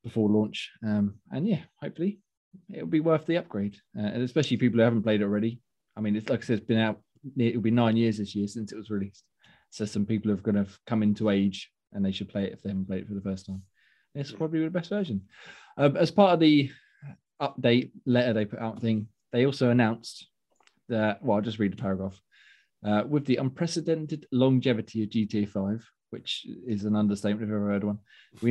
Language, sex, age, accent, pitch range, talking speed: English, male, 20-39, British, 100-125 Hz, 230 wpm